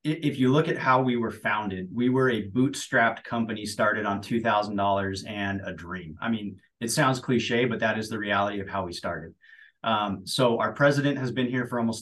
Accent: American